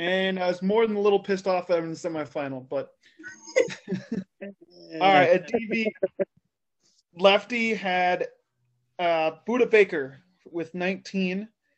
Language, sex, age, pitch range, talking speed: English, male, 20-39, 170-210 Hz, 130 wpm